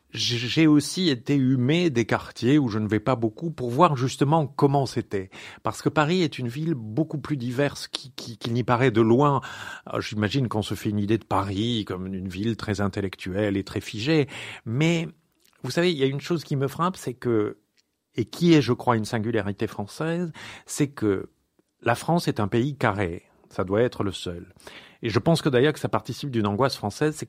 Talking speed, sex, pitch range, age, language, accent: 205 wpm, male, 110-150 Hz, 50-69, French, French